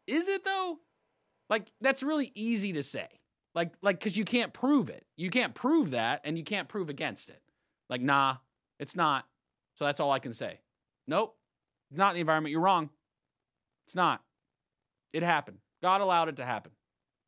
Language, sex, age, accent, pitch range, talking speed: English, male, 30-49, American, 130-200 Hz, 185 wpm